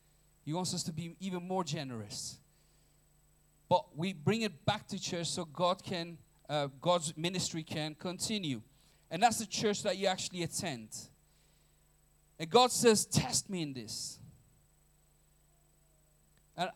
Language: English